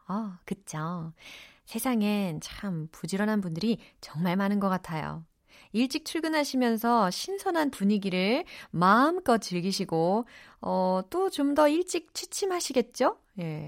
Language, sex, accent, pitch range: Korean, female, native, 170-260 Hz